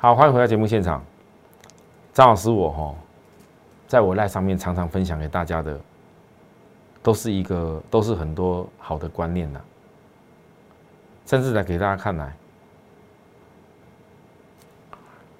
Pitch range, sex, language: 90-125 Hz, male, Chinese